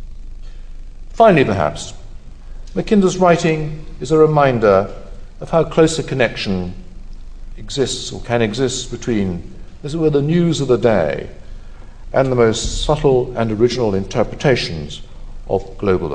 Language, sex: English, male